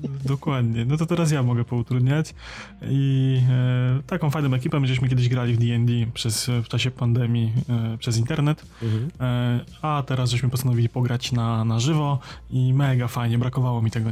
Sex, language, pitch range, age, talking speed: male, Polish, 120-130 Hz, 20-39, 165 wpm